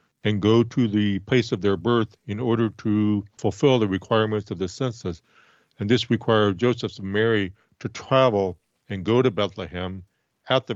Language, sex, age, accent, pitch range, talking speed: English, male, 50-69, American, 100-120 Hz, 165 wpm